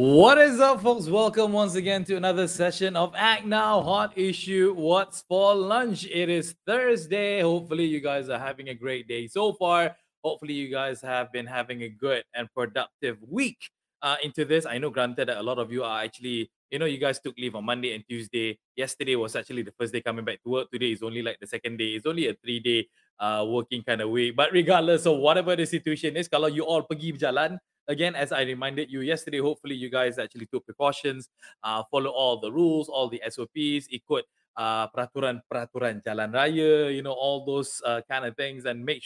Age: 20-39